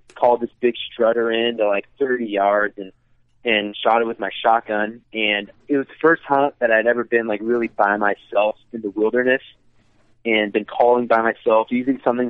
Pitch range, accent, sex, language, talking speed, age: 100-120 Hz, American, male, English, 195 wpm, 20-39